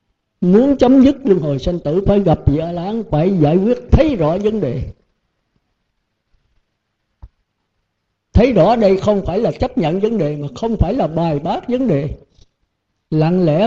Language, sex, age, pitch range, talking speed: Vietnamese, male, 60-79, 150-220 Hz, 165 wpm